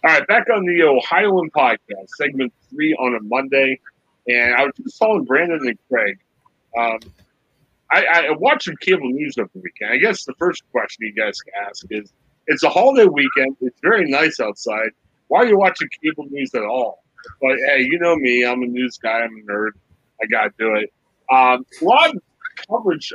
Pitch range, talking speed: 130-195 Hz, 195 wpm